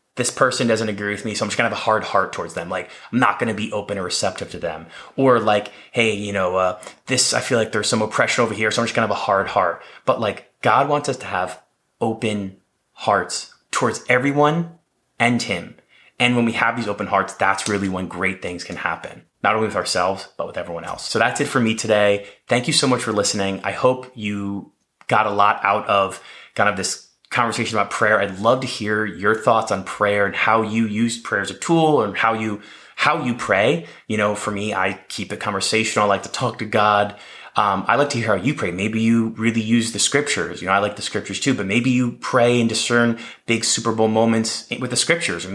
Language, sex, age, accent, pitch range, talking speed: English, male, 20-39, American, 100-125 Hz, 240 wpm